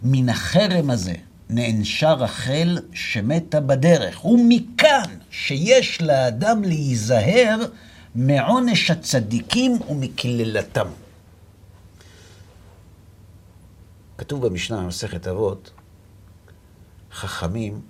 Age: 50-69